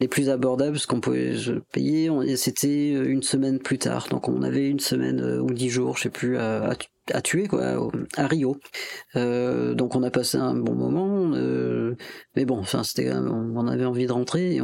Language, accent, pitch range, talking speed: French, French, 105-135 Hz, 195 wpm